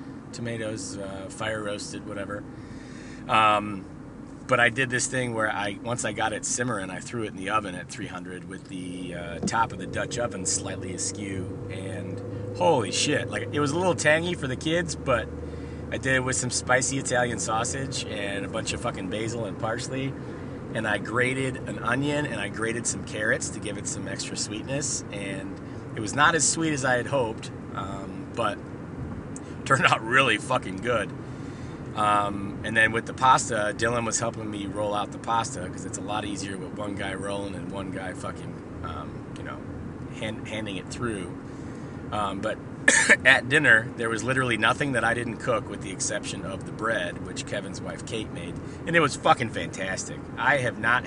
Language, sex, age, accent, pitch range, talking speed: English, male, 30-49, American, 100-130 Hz, 190 wpm